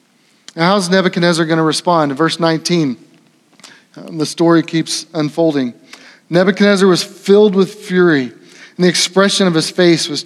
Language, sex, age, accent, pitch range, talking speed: English, male, 30-49, American, 160-195 Hz, 145 wpm